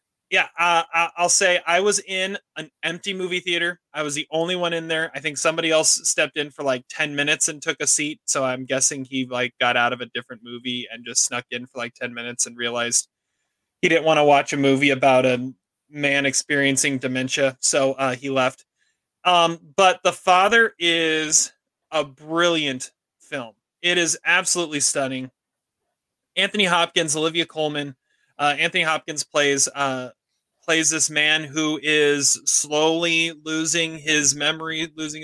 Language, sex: English, male